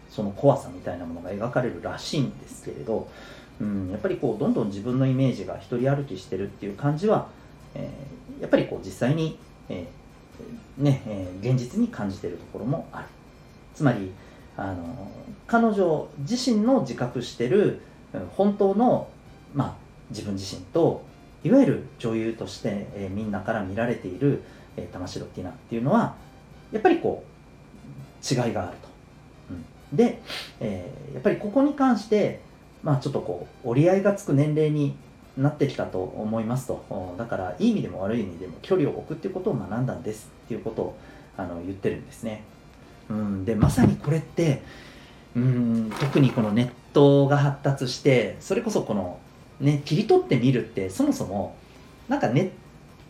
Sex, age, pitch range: male, 40-59, 115-165 Hz